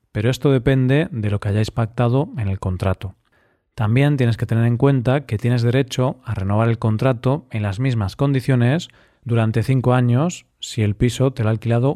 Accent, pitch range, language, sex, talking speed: Spanish, 110-130 Hz, Spanish, male, 190 wpm